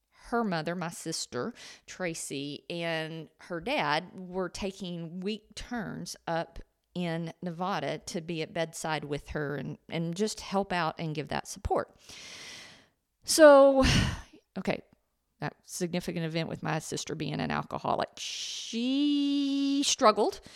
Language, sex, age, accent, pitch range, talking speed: English, female, 50-69, American, 150-200 Hz, 125 wpm